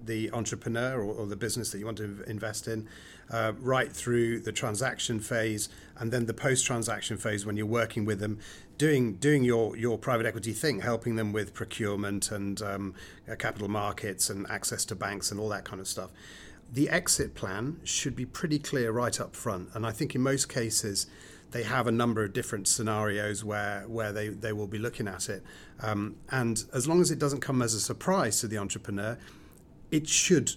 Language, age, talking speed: English, 40-59, 200 wpm